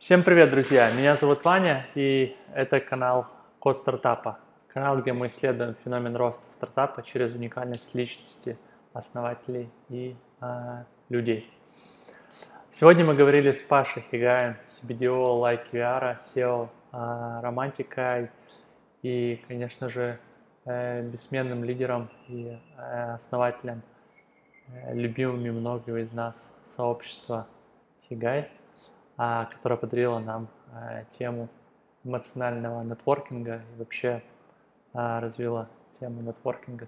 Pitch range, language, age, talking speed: 115-125 Hz, Russian, 20-39, 110 wpm